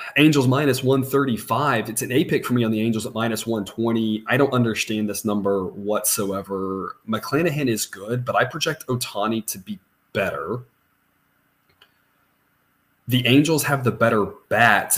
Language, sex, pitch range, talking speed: English, male, 105-130 Hz, 150 wpm